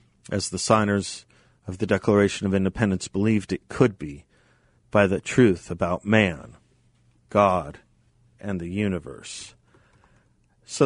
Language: English